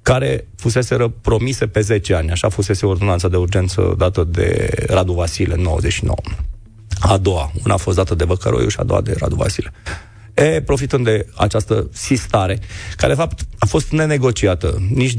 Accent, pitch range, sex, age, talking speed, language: native, 90-115 Hz, male, 30-49, 170 wpm, Romanian